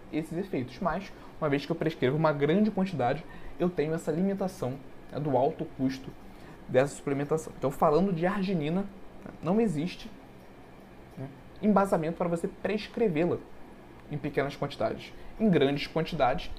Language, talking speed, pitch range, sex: Portuguese, 140 wpm, 135-190 Hz, male